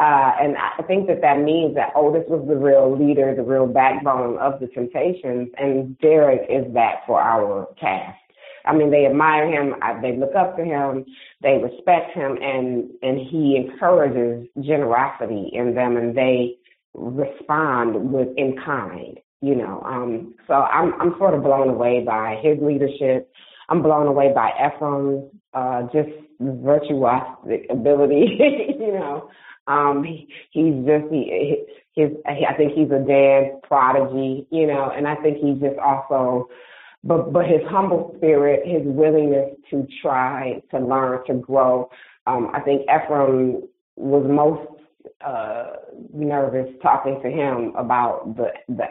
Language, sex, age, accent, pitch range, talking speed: English, female, 30-49, American, 135-165 Hz, 155 wpm